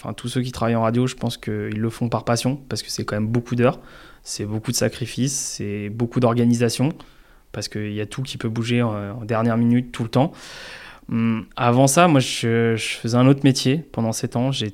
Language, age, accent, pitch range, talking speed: French, 20-39, French, 110-125 Hz, 230 wpm